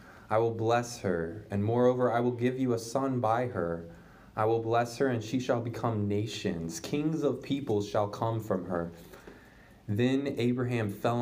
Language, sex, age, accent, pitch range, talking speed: English, male, 20-39, American, 100-115 Hz, 175 wpm